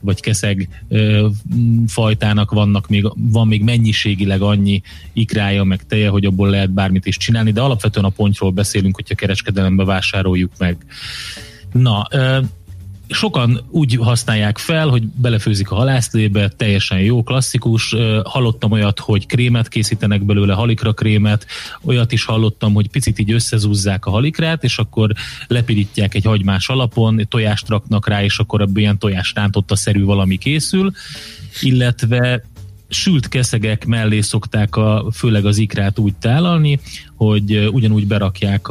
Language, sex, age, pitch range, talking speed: Hungarian, male, 30-49, 100-120 Hz, 140 wpm